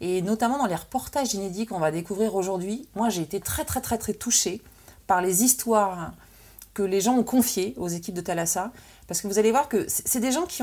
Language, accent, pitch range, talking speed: French, French, 180-240 Hz, 225 wpm